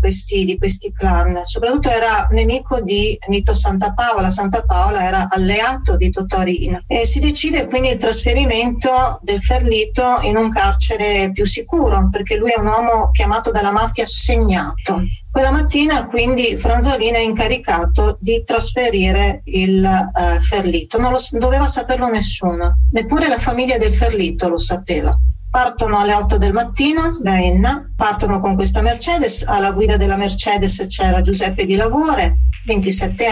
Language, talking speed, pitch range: Italian, 145 wpm, 180-245 Hz